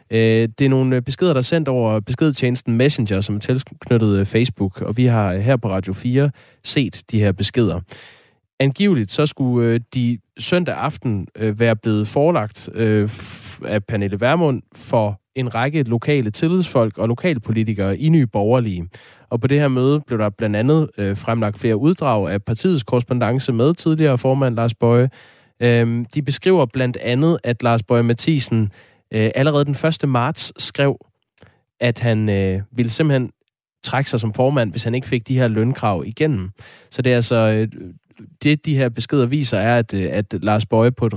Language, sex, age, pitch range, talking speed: Danish, male, 20-39, 110-135 Hz, 165 wpm